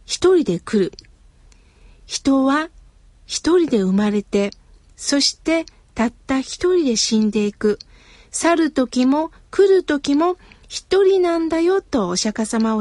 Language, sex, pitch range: Japanese, female, 220-325 Hz